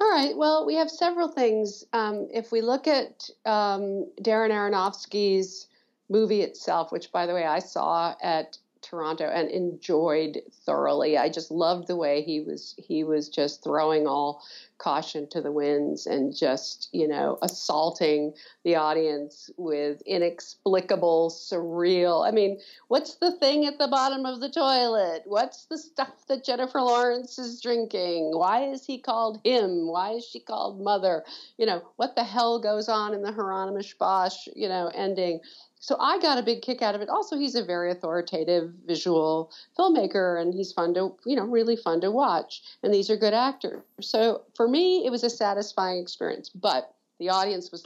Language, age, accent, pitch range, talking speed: English, 50-69, American, 170-235 Hz, 175 wpm